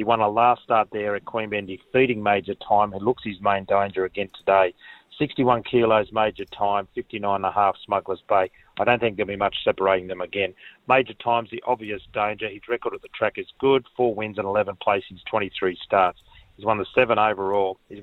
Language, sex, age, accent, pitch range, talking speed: English, male, 40-59, Australian, 100-120 Hz, 200 wpm